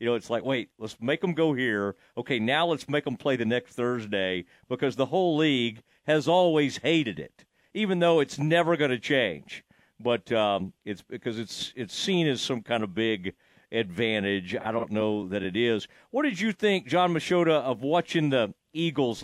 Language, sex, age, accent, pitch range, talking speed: English, male, 50-69, American, 120-170 Hz, 195 wpm